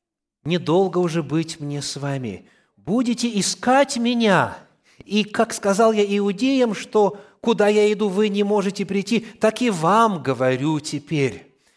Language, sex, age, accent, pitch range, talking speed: Russian, male, 30-49, native, 160-220 Hz, 140 wpm